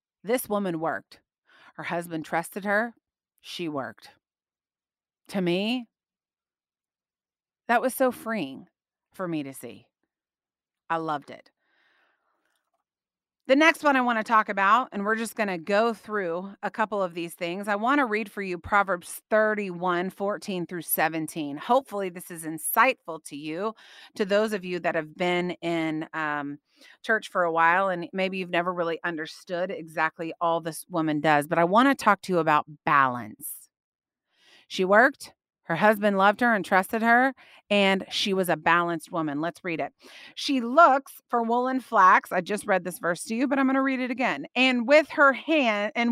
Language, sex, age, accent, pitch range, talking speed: English, female, 30-49, American, 175-255 Hz, 175 wpm